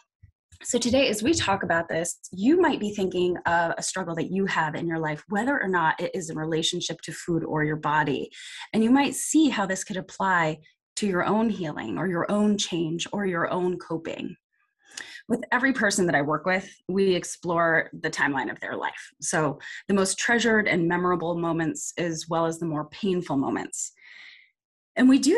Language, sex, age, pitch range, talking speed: English, female, 20-39, 165-225 Hz, 195 wpm